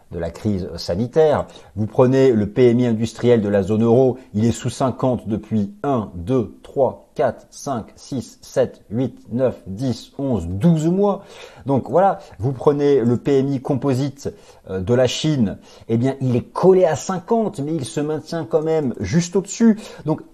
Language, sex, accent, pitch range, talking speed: French, male, French, 105-145 Hz, 170 wpm